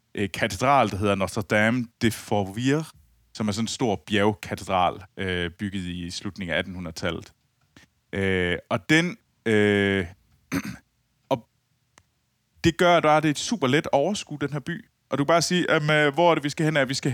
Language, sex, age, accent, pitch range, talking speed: Danish, male, 20-39, native, 100-145 Hz, 160 wpm